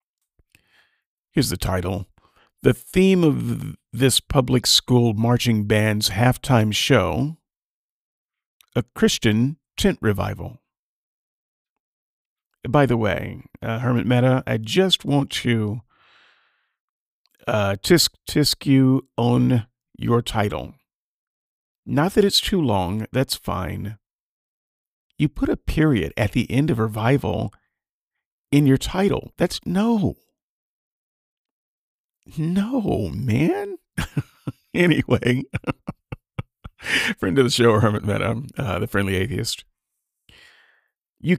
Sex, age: male, 50-69